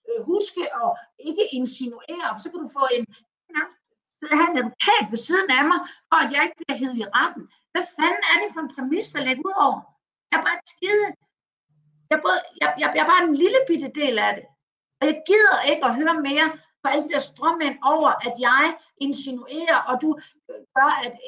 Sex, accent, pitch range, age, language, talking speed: female, native, 255-330 Hz, 50-69, Danish, 205 wpm